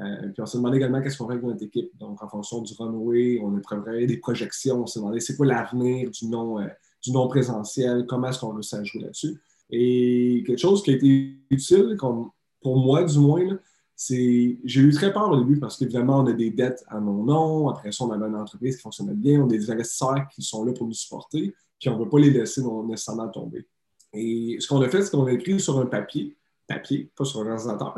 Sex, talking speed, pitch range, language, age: male, 240 wpm, 115-140 Hz, French, 20-39